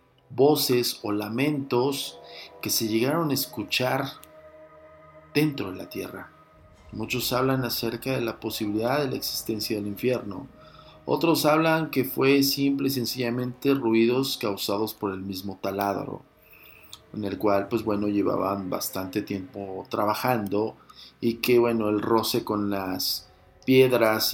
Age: 50-69